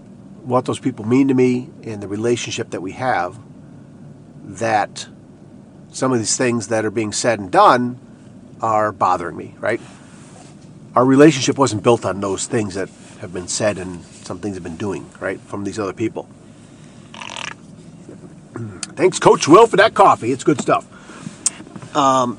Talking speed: 160 wpm